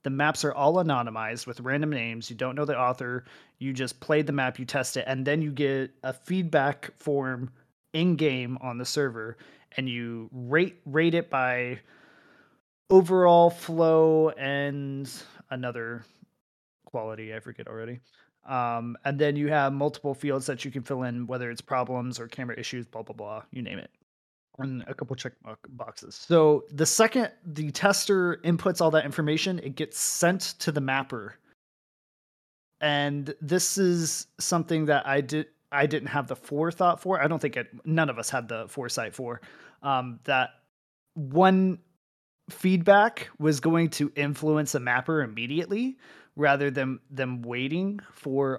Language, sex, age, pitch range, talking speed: English, male, 30-49, 130-160 Hz, 160 wpm